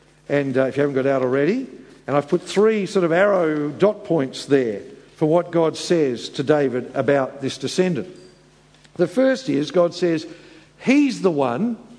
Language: English